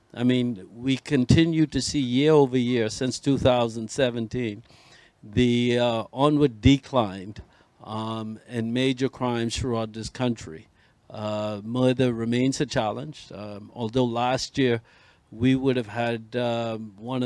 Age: 60-79